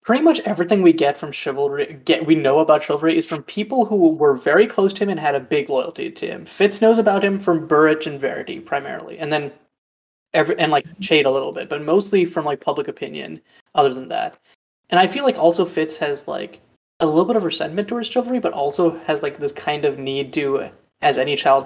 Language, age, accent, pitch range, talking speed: English, 20-39, American, 145-200 Hz, 225 wpm